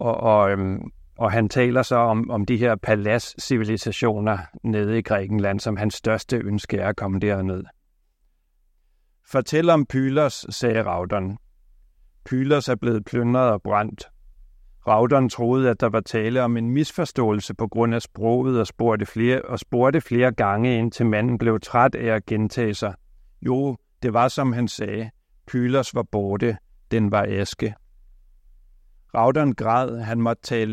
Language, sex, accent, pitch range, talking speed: Danish, male, native, 105-125 Hz, 155 wpm